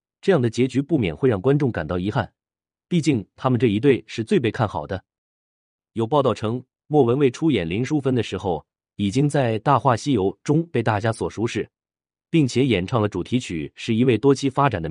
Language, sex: Chinese, male